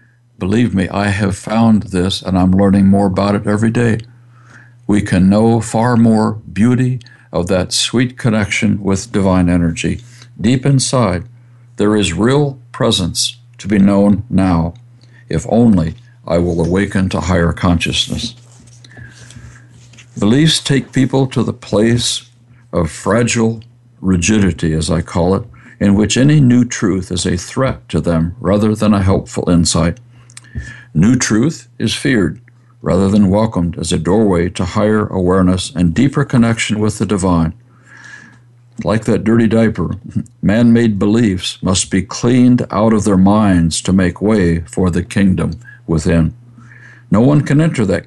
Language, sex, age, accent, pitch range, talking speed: English, male, 60-79, American, 95-120 Hz, 145 wpm